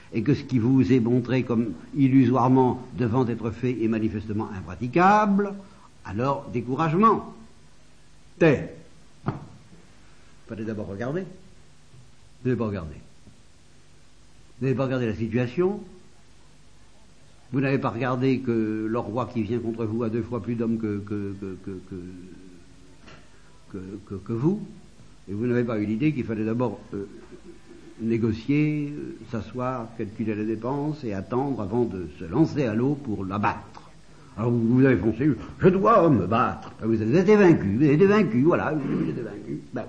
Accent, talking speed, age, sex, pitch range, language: French, 160 wpm, 60-79, male, 105-130 Hz, English